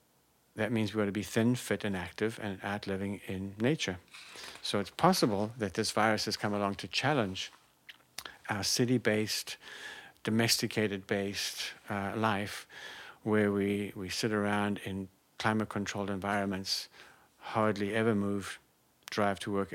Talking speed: 135 wpm